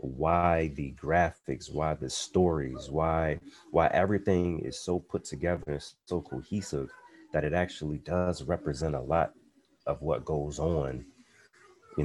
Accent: American